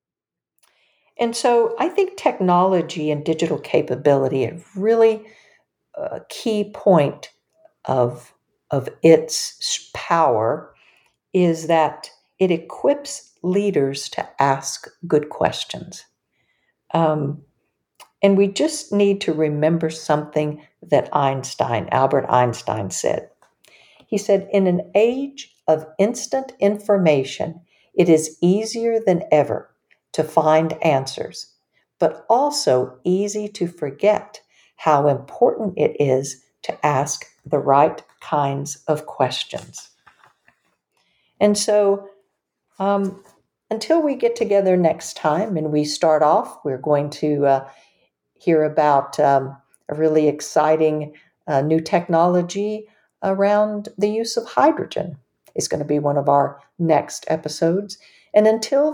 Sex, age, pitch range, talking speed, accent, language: female, 50-69, 150-210 Hz, 115 wpm, American, English